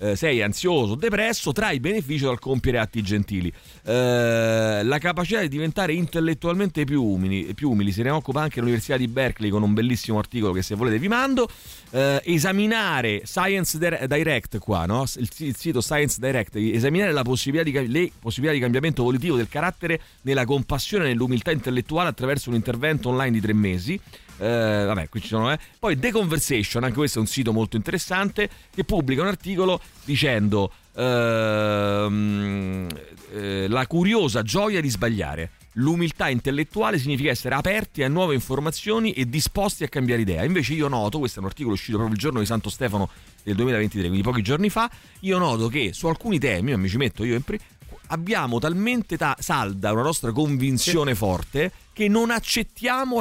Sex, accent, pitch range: male, native, 110-165 Hz